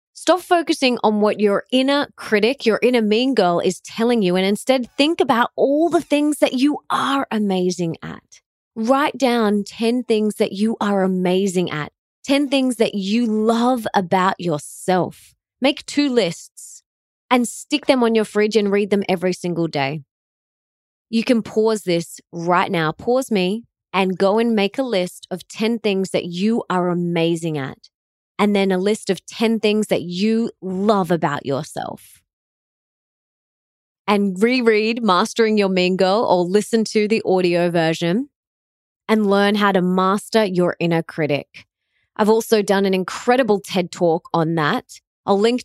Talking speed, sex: 160 wpm, female